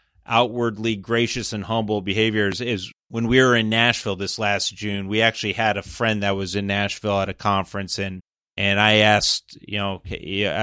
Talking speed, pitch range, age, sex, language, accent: 185 wpm, 100-115 Hz, 30-49, male, English, American